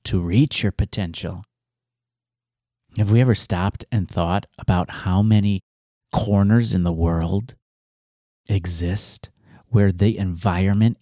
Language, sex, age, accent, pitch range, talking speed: English, male, 40-59, American, 95-125 Hz, 115 wpm